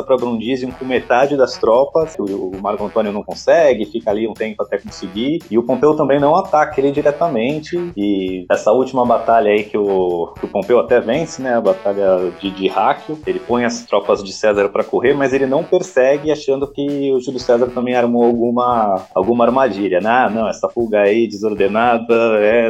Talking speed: 195 wpm